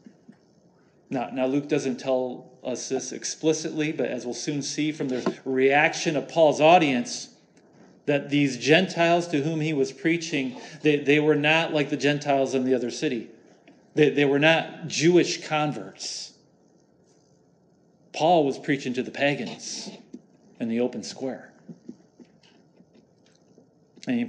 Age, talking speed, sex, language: 40-59, 135 wpm, male, English